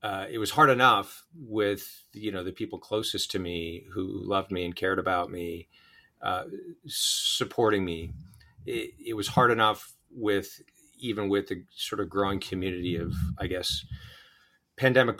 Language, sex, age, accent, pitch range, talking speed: English, male, 40-59, American, 95-110 Hz, 160 wpm